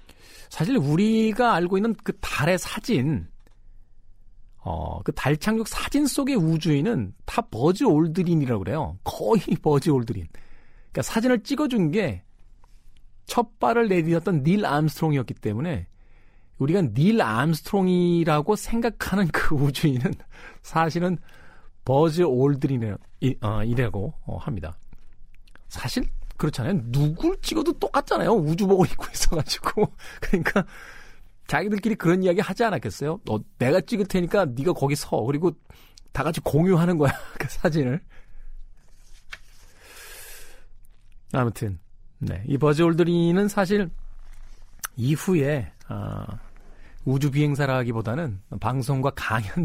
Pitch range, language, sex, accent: 110-185 Hz, Korean, male, native